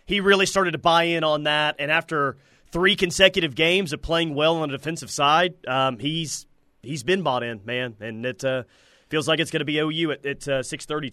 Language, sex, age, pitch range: English, male, 30-49, 130-185 Hz